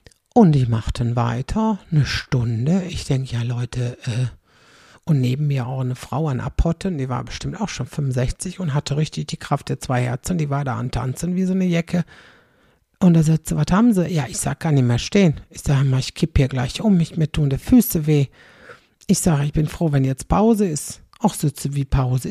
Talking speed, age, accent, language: 220 wpm, 60-79, German, German